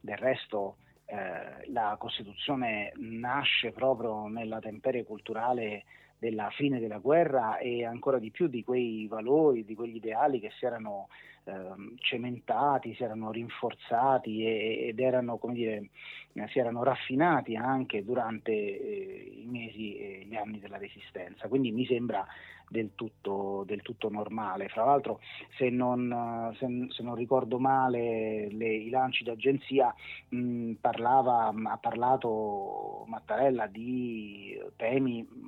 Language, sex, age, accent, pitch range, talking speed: Italian, male, 30-49, native, 110-130 Hz, 130 wpm